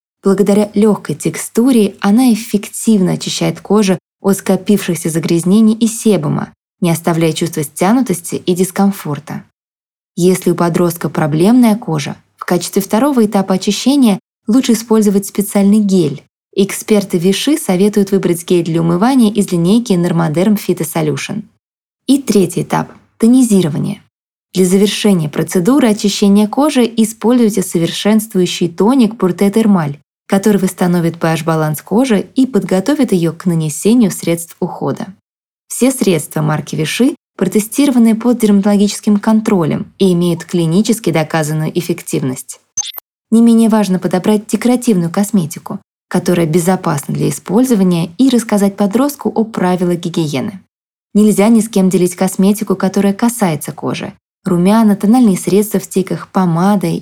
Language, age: Russian, 20-39